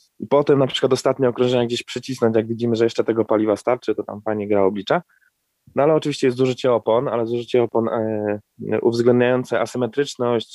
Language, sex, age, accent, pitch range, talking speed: Polish, male, 20-39, native, 110-130 Hz, 170 wpm